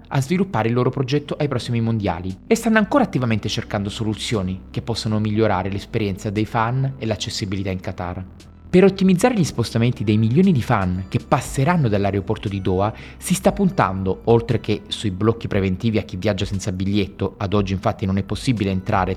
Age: 30-49